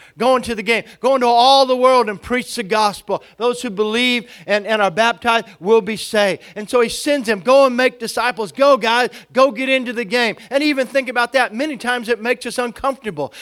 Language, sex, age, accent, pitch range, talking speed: English, male, 40-59, American, 210-250 Hz, 225 wpm